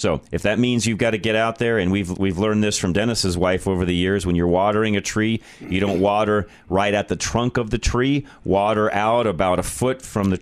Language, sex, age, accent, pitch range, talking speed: English, male, 40-59, American, 90-110 Hz, 250 wpm